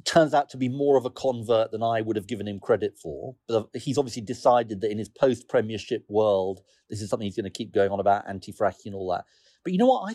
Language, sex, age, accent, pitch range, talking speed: English, male, 40-59, British, 110-175 Hz, 260 wpm